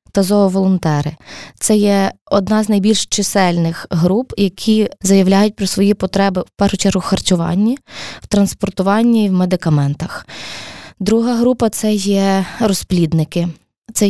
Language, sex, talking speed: Ukrainian, female, 130 wpm